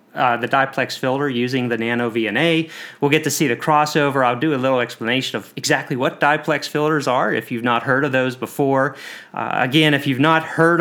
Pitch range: 120-145 Hz